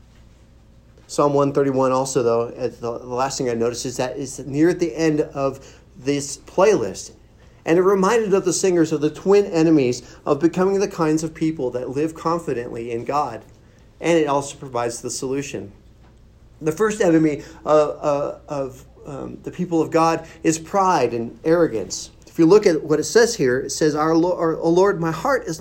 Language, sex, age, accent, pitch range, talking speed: English, male, 40-59, American, 135-175 Hz, 185 wpm